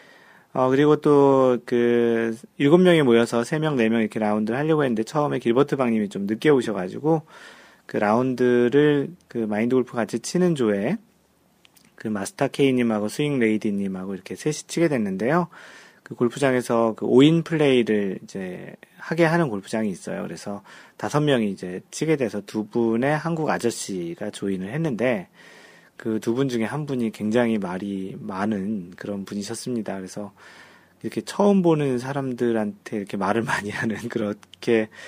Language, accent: Korean, native